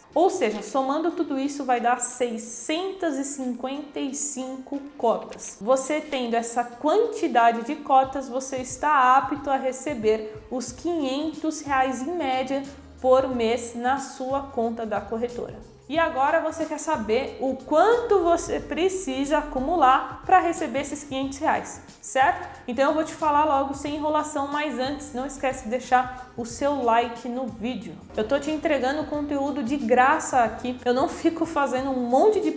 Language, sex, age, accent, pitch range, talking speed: Portuguese, female, 20-39, Brazilian, 250-305 Hz, 150 wpm